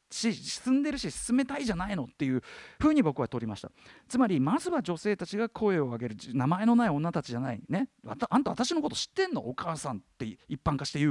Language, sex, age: Japanese, male, 40-59